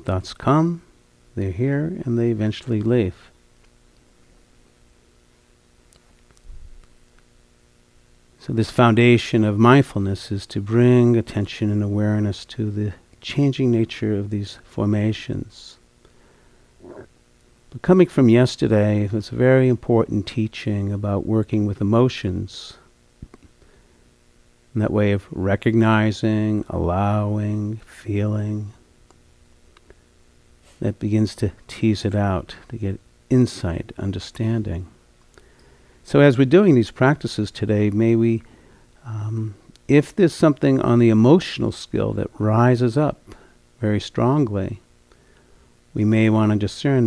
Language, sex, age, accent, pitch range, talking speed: English, male, 50-69, American, 80-115 Hz, 105 wpm